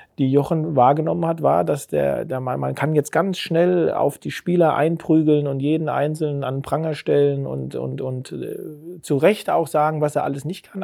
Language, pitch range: German, 140-175 Hz